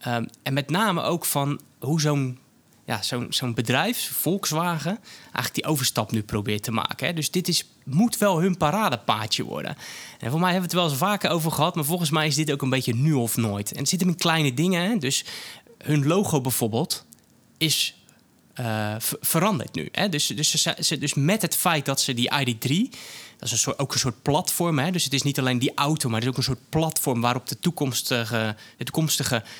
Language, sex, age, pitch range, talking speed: Dutch, male, 20-39, 130-170 Hz, 220 wpm